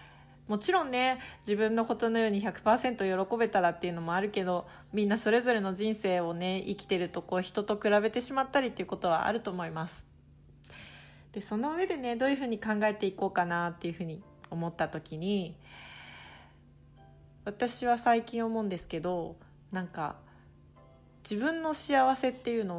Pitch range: 160-225 Hz